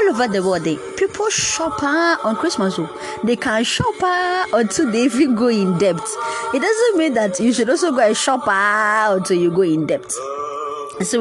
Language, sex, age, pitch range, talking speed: English, female, 20-39, 180-240 Hz, 205 wpm